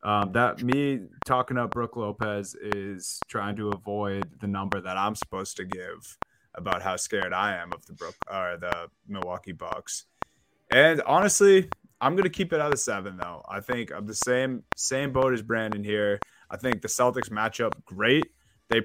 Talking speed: 190 wpm